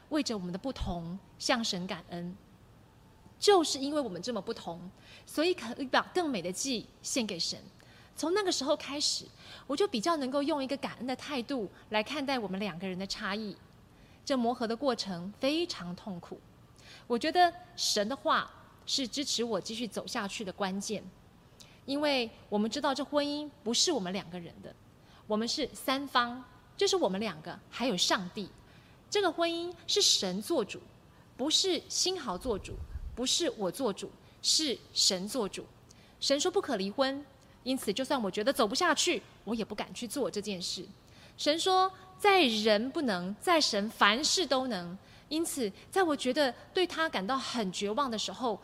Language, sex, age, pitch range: Chinese, female, 20-39, 200-295 Hz